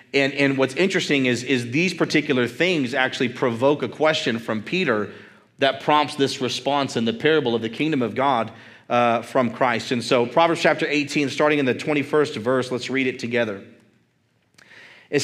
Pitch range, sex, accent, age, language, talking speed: 130-160 Hz, male, American, 40-59, English, 175 wpm